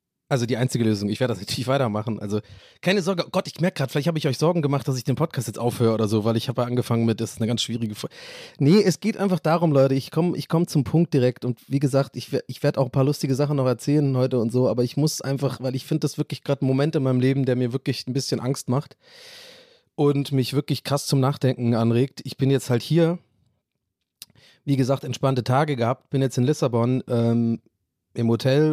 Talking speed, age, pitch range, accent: 245 wpm, 30-49, 125-145 Hz, German